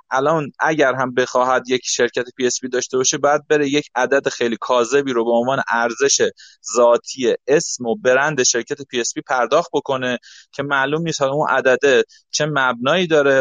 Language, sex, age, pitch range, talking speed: Persian, male, 30-49, 130-175 Hz, 175 wpm